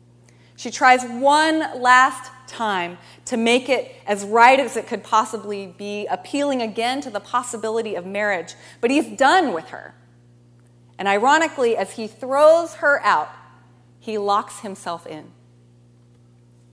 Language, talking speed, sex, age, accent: English, 135 wpm, female, 30-49, American